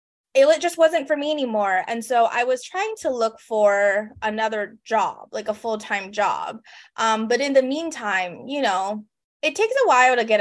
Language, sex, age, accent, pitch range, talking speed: English, female, 20-39, American, 210-270 Hz, 190 wpm